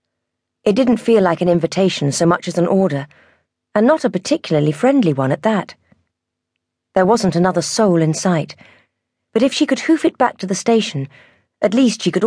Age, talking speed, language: 40-59, 190 wpm, English